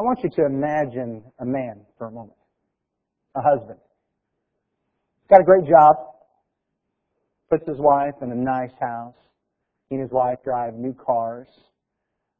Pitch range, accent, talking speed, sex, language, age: 140-190 Hz, American, 150 wpm, male, English, 40-59